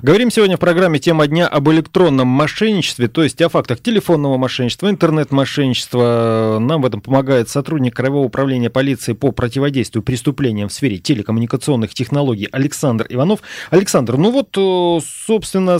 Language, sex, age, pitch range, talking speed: Russian, male, 30-49, 115-160 Hz, 140 wpm